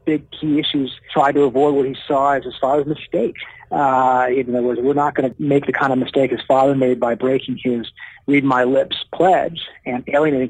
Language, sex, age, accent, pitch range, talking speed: English, male, 40-59, American, 125-145 Hz, 205 wpm